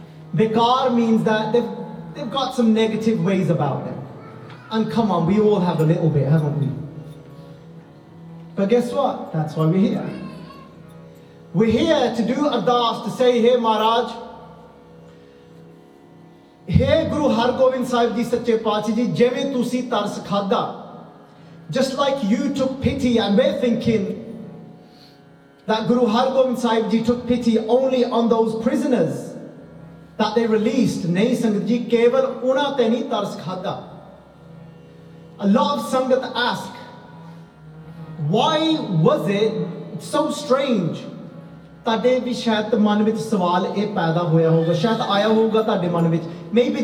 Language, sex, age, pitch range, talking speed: English, male, 30-49, 175-240 Hz, 120 wpm